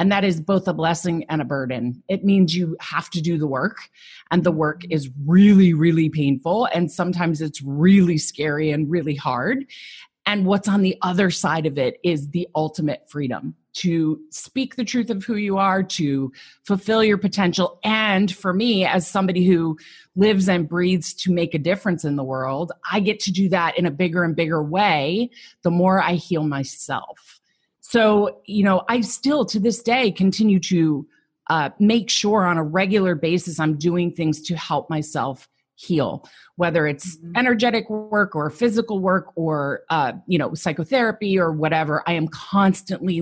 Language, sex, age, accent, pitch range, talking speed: English, female, 30-49, American, 155-200 Hz, 180 wpm